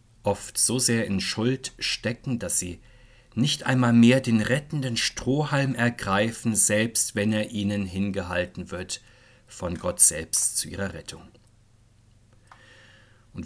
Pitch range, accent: 100-120 Hz, German